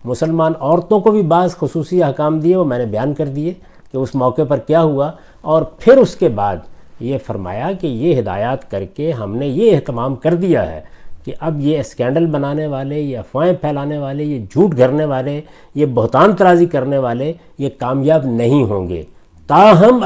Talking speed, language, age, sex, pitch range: 190 wpm, Urdu, 50-69, male, 125-180 Hz